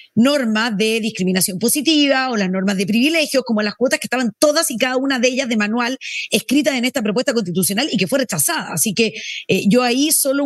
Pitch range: 190-245 Hz